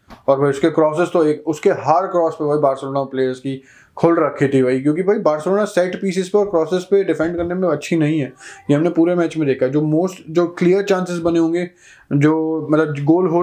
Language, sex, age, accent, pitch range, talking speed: Hindi, male, 20-39, native, 135-185 Hz, 65 wpm